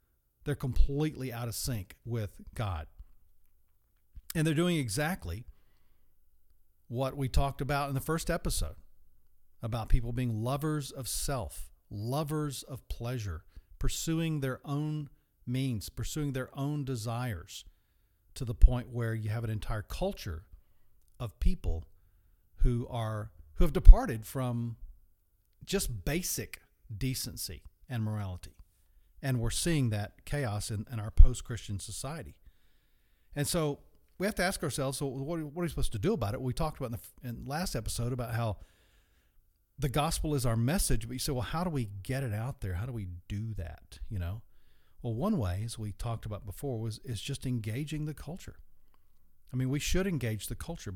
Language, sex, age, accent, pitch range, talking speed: English, male, 50-69, American, 95-140 Hz, 160 wpm